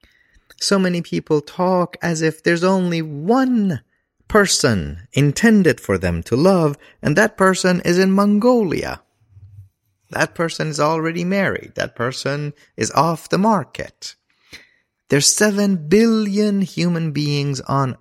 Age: 30-49